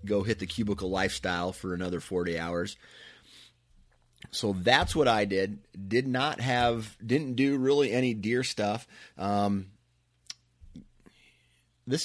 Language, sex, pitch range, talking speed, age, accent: English, male, 95-115 Hz, 125 wpm, 30-49, American